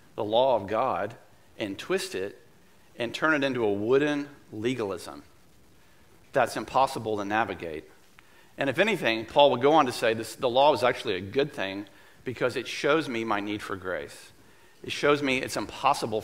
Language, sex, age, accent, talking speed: English, male, 40-59, American, 185 wpm